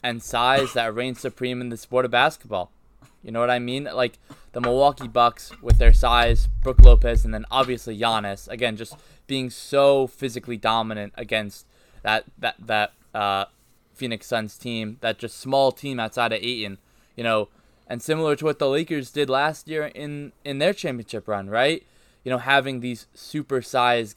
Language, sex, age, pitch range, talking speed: English, male, 20-39, 115-140 Hz, 175 wpm